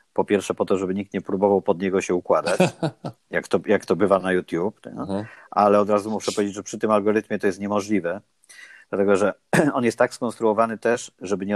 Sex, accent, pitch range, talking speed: male, native, 90-105 Hz, 200 wpm